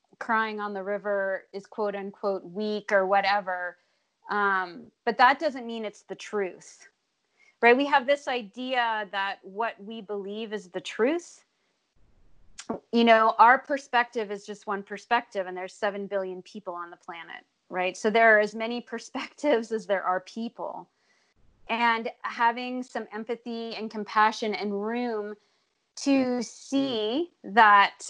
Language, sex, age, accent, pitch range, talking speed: English, female, 30-49, American, 200-235 Hz, 145 wpm